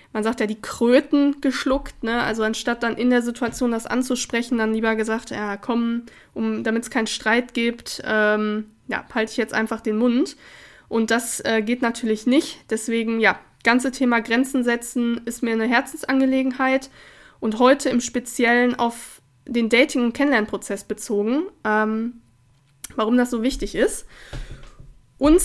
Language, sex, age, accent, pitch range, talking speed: German, female, 20-39, German, 225-265 Hz, 160 wpm